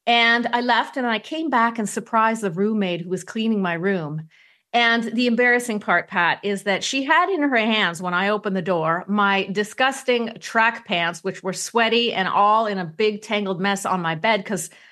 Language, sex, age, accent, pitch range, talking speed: English, female, 40-59, American, 190-255 Hz, 205 wpm